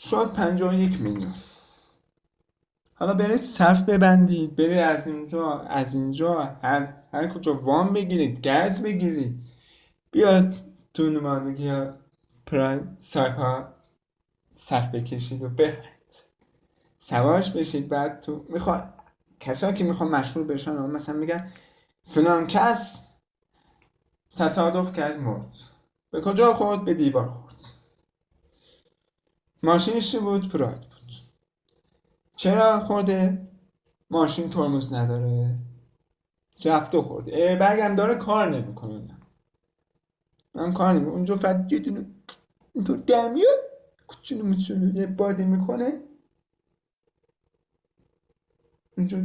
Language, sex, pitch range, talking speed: Persian, male, 145-190 Hz, 95 wpm